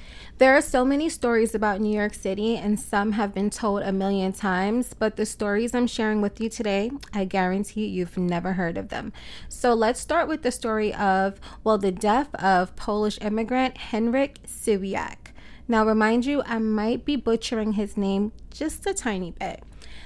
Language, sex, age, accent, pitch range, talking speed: English, female, 20-39, American, 200-240 Hz, 180 wpm